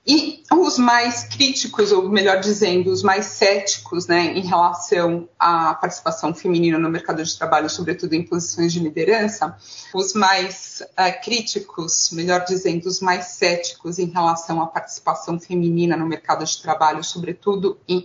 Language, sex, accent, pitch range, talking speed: Portuguese, female, Brazilian, 175-215 Hz, 145 wpm